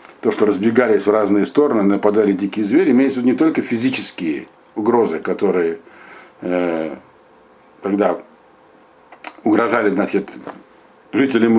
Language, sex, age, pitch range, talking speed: Russian, male, 60-79, 105-135 Hz, 105 wpm